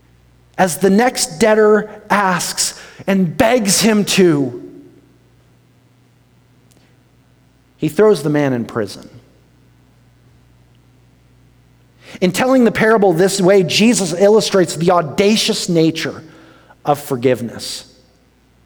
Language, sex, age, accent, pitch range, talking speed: English, male, 40-59, American, 115-175 Hz, 90 wpm